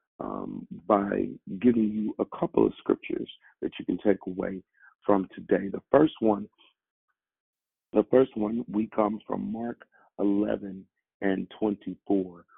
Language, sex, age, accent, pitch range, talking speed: English, male, 50-69, American, 100-120 Hz, 135 wpm